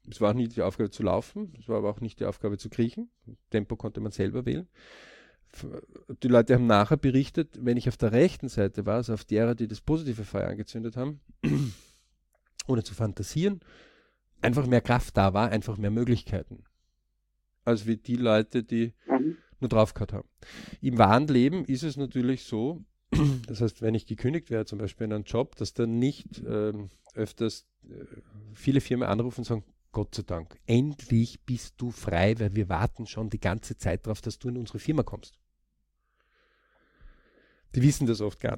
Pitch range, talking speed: 105-125 Hz, 180 wpm